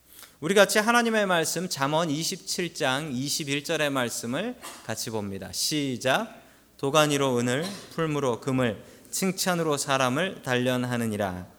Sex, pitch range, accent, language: male, 125-205 Hz, native, Korean